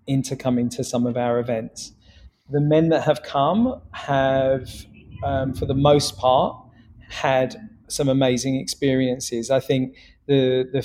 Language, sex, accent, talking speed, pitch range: English, male, British, 145 wpm, 125-140 Hz